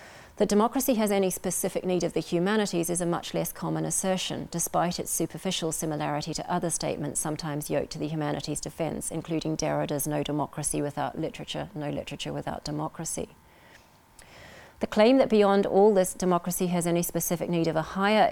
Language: English